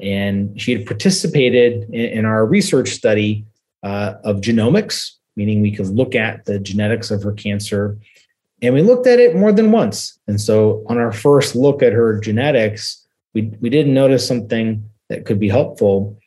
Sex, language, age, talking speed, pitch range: male, English, 30-49, 175 wpm, 105-125 Hz